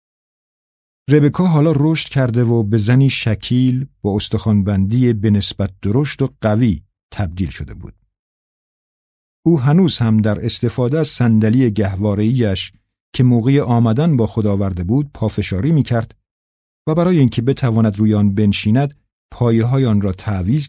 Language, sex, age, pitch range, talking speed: Persian, male, 50-69, 100-125 Hz, 135 wpm